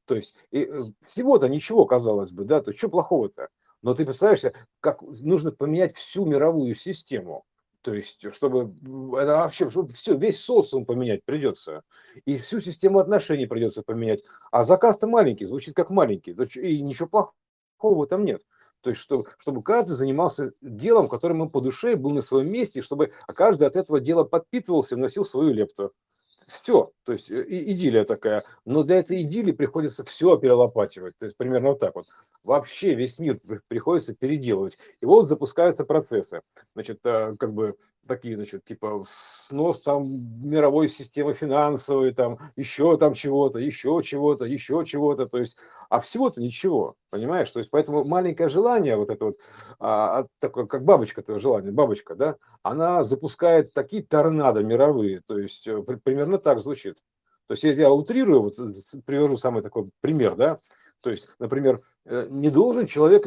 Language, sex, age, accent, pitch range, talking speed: Russian, male, 50-69, native, 130-195 Hz, 160 wpm